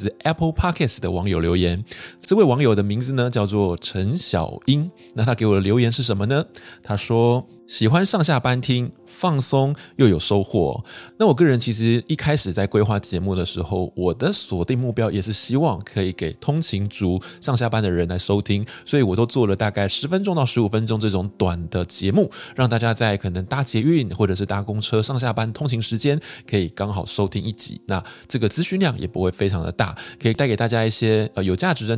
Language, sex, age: Chinese, male, 20-39